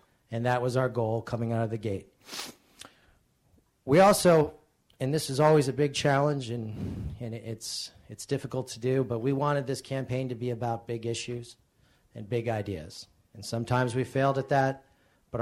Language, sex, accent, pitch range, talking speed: English, male, American, 115-130 Hz, 180 wpm